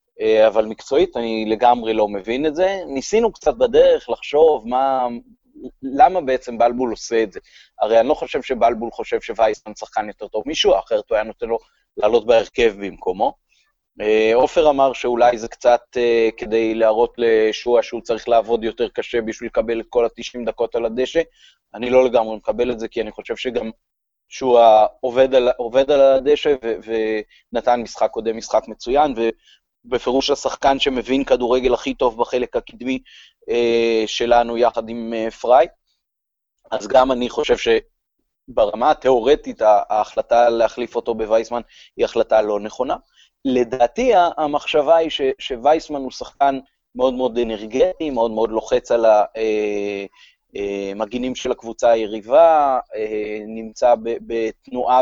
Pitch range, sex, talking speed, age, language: 115-135 Hz, male, 140 wpm, 30-49, Hebrew